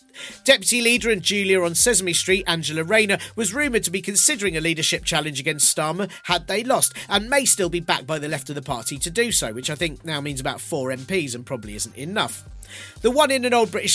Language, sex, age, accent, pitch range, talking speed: English, male, 40-59, British, 155-215 Hz, 230 wpm